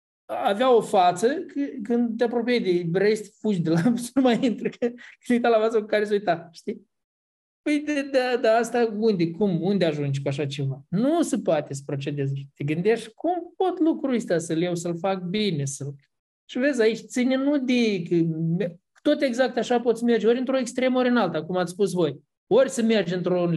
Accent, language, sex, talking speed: native, Romanian, male, 200 wpm